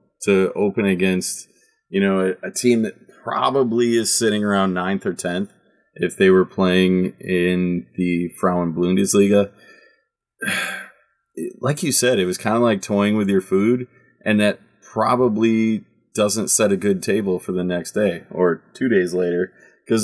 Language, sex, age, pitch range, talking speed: English, male, 20-39, 90-115 Hz, 155 wpm